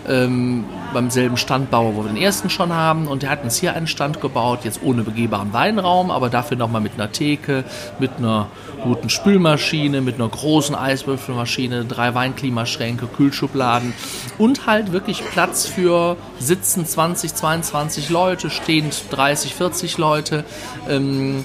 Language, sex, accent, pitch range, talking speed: German, male, German, 125-160 Hz, 150 wpm